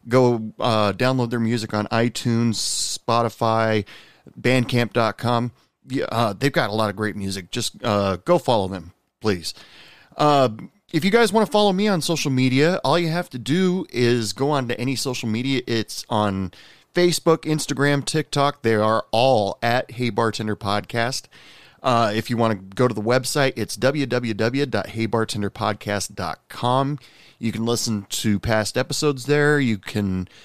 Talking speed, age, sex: 150 wpm, 30-49, male